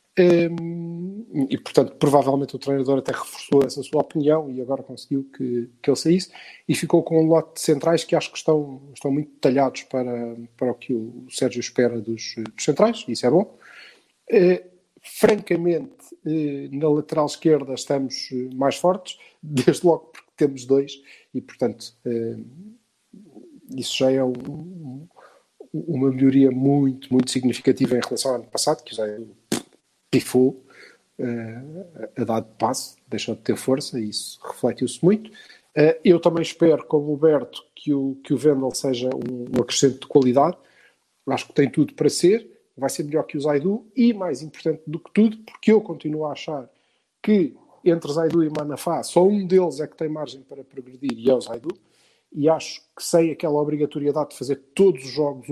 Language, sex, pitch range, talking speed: Portuguese, male, 130-165 Hz, 170 wpm